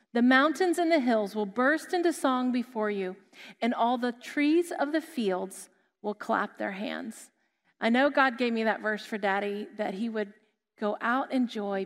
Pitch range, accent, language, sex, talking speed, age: 225-285 Hz, American, English, female, 190 wpm, 40-59